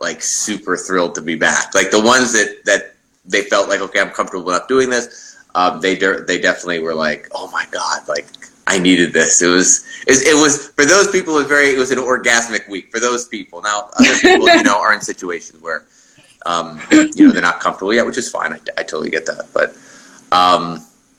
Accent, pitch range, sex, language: American, 90-130 Hz, male, English